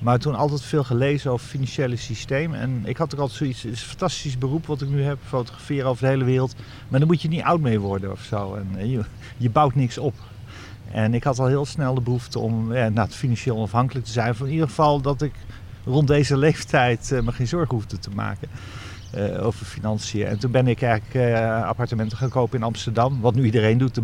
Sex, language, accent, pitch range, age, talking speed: male, Dutch, Dutch, 115-140 Hz, 50-69, 235 wpm